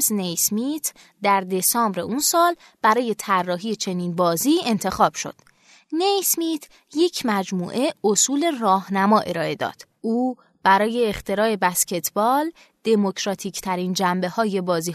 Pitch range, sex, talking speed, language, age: 185-275 Hz, female, 105 wpm, Persian, 20-39